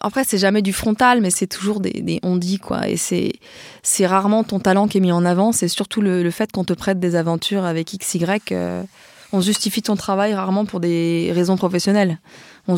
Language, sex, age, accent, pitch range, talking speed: French, female, 20-39, French, 175-210 Hz, 215 wpm